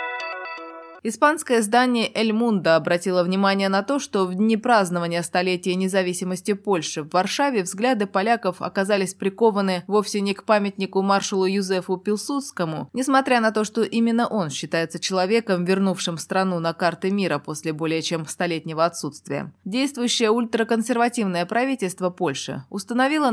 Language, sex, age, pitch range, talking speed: Russian, female, 20-39, 180-225 Hz, 130 wpm